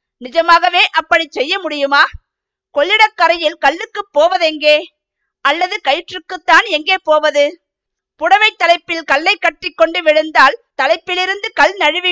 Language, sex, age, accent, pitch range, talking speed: Tamil, female, 50-69, native, 290-360 Hz, 100 wpm